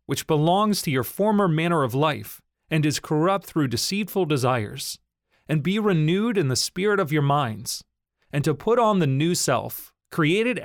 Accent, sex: American, male